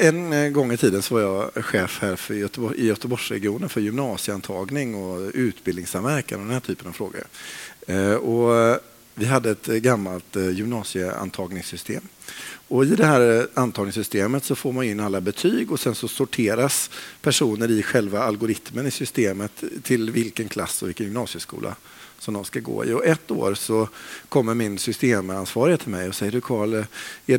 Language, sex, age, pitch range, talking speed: Swedish, male, 50-69, 100-130 Hz, 160 wpm